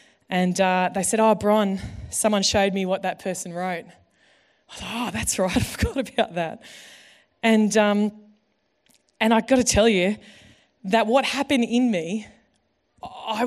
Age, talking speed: 20-39, 150 wpm